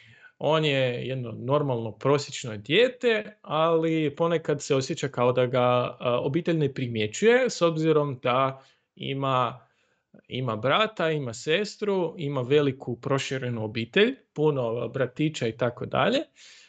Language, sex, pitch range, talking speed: Croatian, male, 125-170 Hz, 120 wpm